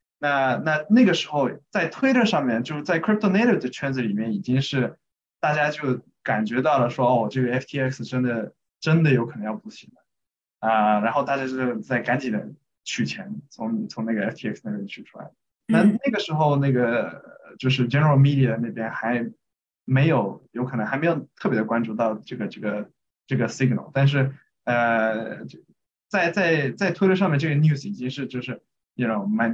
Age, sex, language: 20-39, male, Chinese